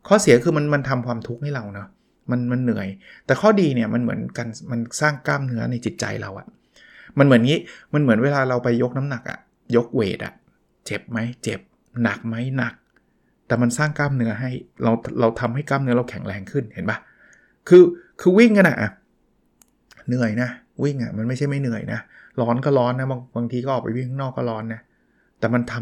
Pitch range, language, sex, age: 120-150 Hz, Thai, male, 20-39